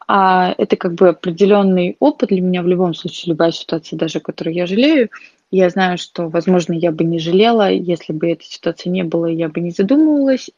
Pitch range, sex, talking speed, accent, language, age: 175-200 Hz, female, 200 wpm, native, Russian, 20-39